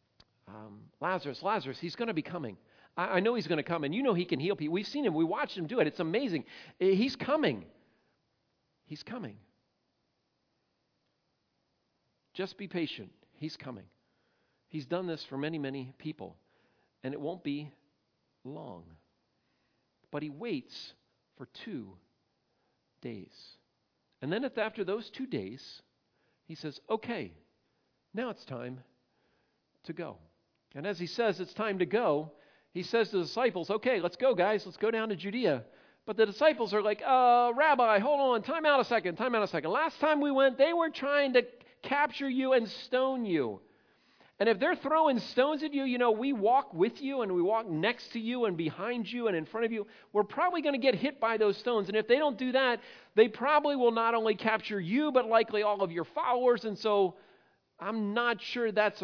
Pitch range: 170-250 Hz